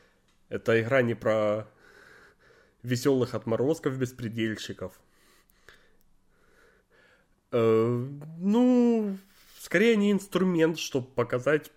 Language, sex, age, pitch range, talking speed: Russian, male, 20-39, 105-140 Hz, 60 wpm